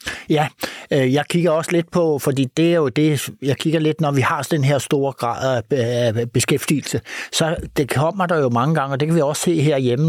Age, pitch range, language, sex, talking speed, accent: 60-79, 115-150 Hz, Danish, male, 225 wpm, native